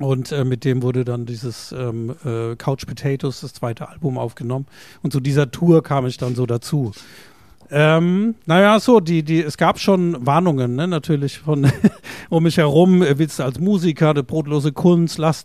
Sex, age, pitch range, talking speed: male, 50-69, 130-155 Hz, 185 wpm